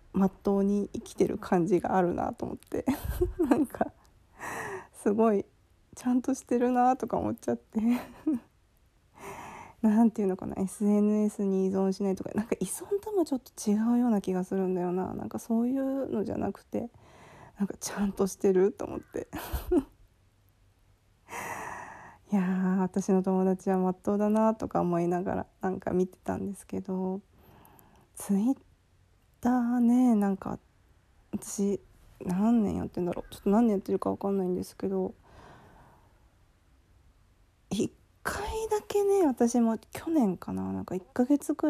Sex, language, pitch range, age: female, Japanese, 175-240 Hz, 20-39